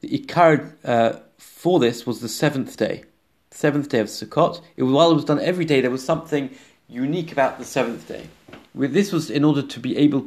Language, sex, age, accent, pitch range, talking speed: English, male, 30-49, British, 115-145 Hz, 215 wpm